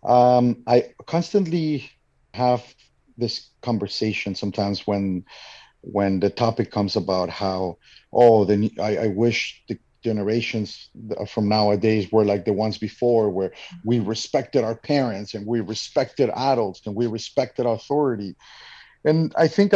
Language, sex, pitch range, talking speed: English, male, 105-125 Hz, 135 wpm